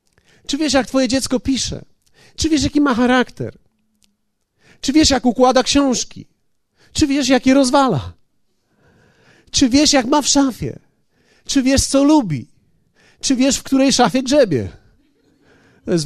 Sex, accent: male, native